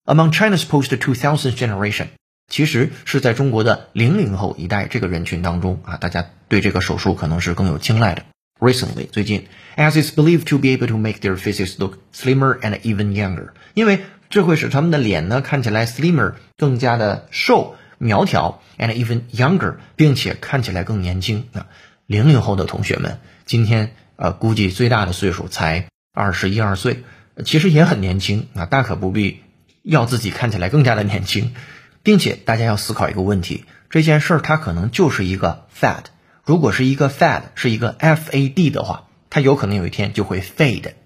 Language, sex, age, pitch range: Chinese, male, 30-49, 100-135 Hz